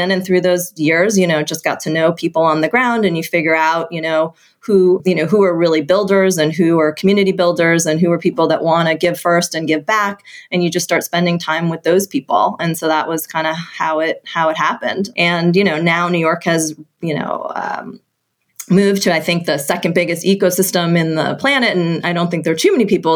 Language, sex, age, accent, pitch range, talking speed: English, female, 30-49, American, 160-180 Hz, 240 wpm